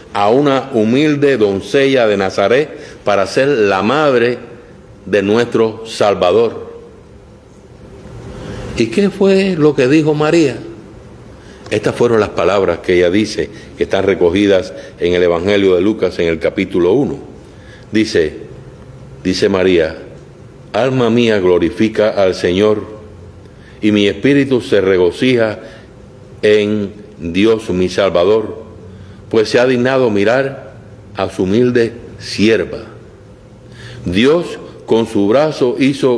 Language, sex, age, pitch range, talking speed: Spanish, male, 60-79, 100-130 Hz, 115 wpm